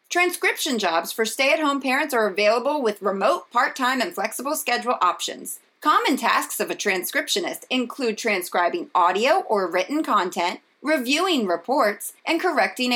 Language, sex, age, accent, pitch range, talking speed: English, female, 30-49, American, 210-310 Hz, 135 wpm